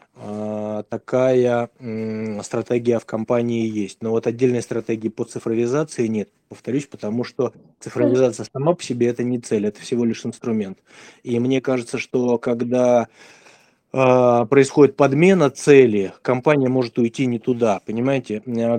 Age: 20-39